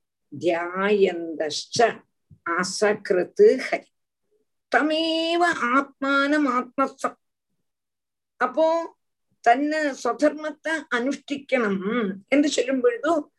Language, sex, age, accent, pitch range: Tamil, female, 50-69, native, 225-305 Hz